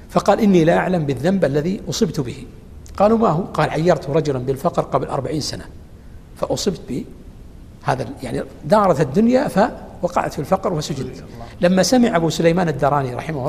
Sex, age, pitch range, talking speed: male, 60-79, 135-185 Hz, 150 wpm